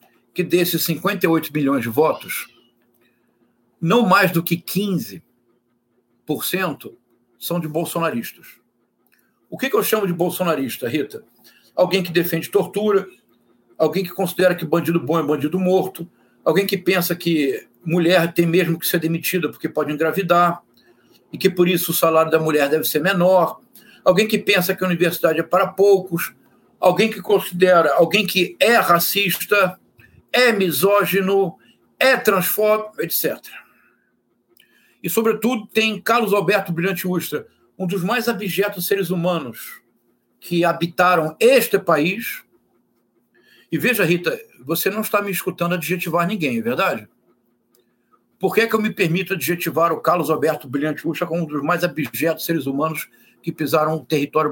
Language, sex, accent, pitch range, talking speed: Portuguese, male, Brazilian, 150-195 Hz, 145 wpm